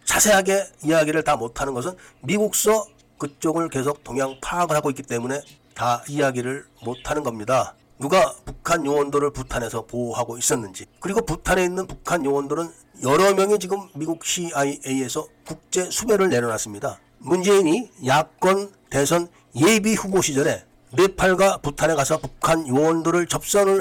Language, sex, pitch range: Korean, male, 145-195 Hz